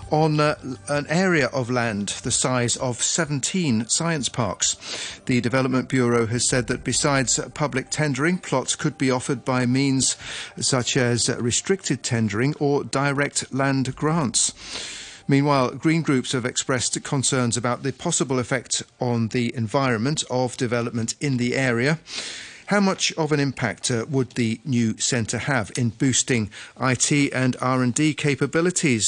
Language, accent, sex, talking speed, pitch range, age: English, British, male, 140 wpm, 120-150 Hz, 40-59